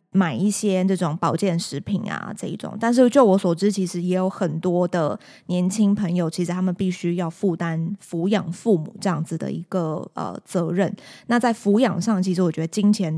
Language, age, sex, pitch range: Chinese, 20-39, female, 170-205 Hz